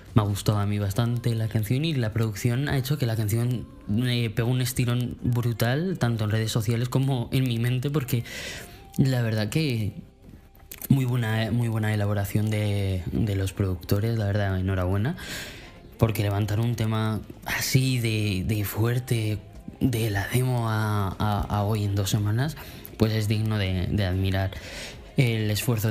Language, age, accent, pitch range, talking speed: Spanish, 20-39, Spanish, 100-120 Hz, 165 wpm